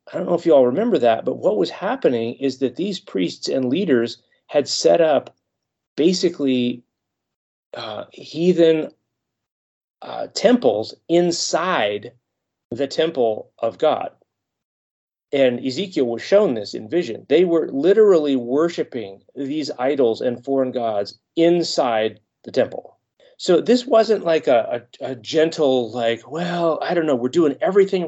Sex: male